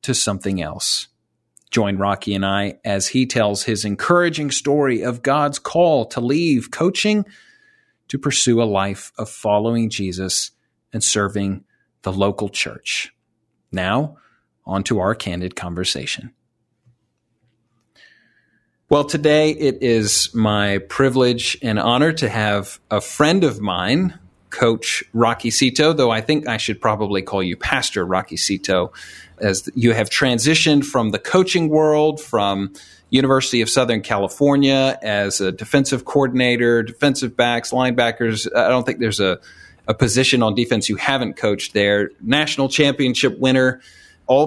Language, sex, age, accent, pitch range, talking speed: English, male, 40-59, American, 105-140 Hz, 140 wpm